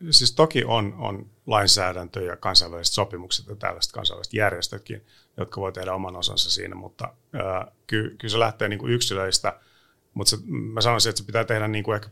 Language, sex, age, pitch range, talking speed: Finnish, male, 30-49, 95-115 Hz, 175 wpm